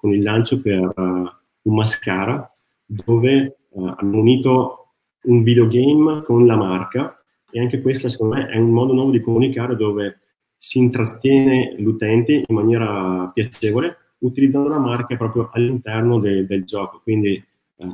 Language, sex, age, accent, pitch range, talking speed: Italian, male, 30-49, native, 100-125 Hz, 145 wpm